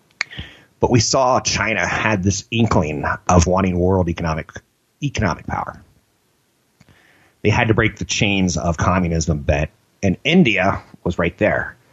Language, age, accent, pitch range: English, 30-49, American, 85-110 Hz